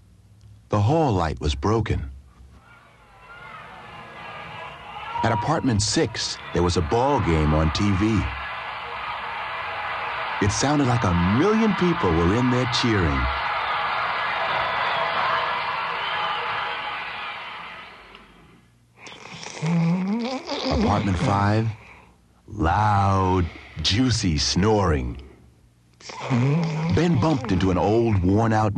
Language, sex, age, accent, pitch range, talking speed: English, male, 60-79, American, 80-130 Hz, 75 wpm